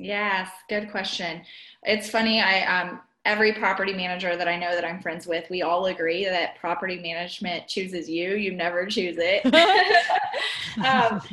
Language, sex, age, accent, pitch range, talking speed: English, female, 20-39, American, 170-225 Hz, 160 wpm